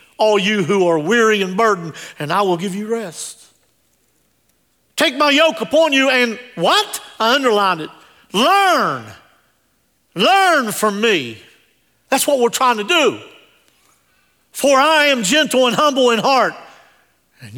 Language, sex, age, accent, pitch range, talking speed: English, male, 50-69, American, 205-300 Hz, 145 wpm